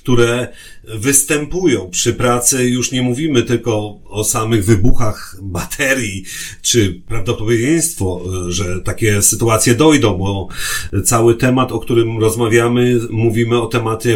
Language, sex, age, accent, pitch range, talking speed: Polish, male, 40-59, native, 110-130 Hz, 115 wpm